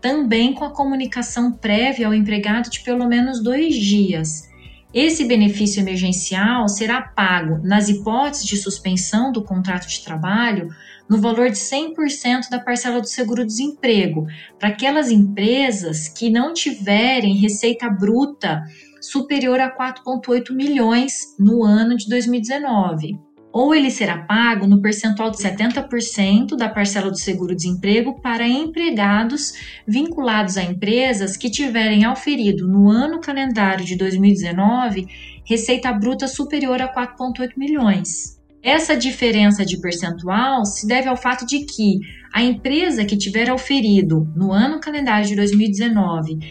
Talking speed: 125 wpm